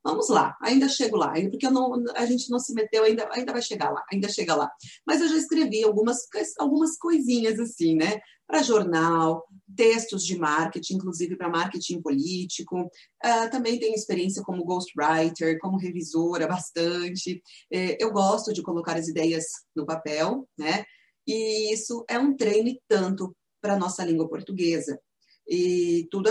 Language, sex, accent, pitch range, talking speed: Portuguese, female, Brazilian, 170-220 Hz, 165 wpm